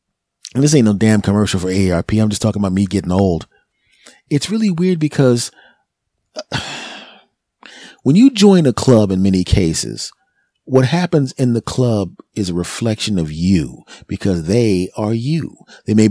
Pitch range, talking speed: 105-140 Hz, 160 wpm